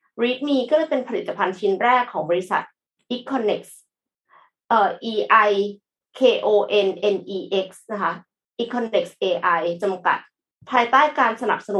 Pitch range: 190-245 Hz